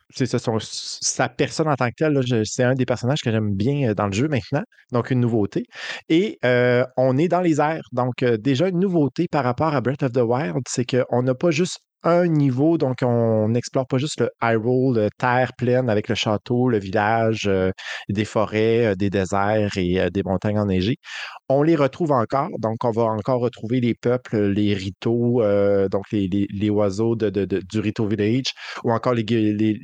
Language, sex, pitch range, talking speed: French, male, 105-130 Hz, 200 wpm